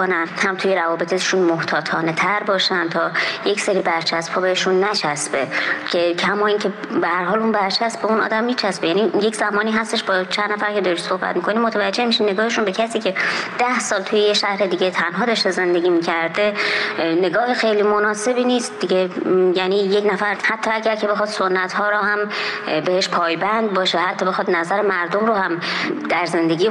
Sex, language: male, Persian